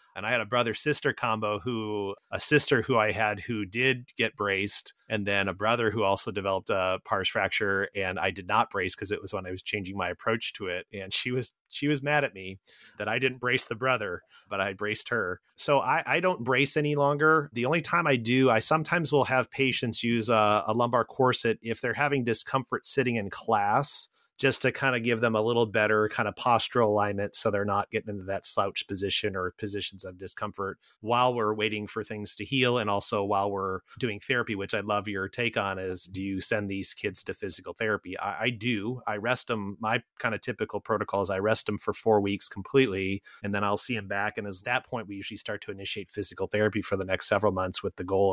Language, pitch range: English, 100-125 Hz